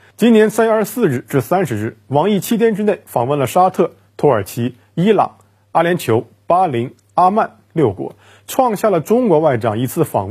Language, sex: Chinese, male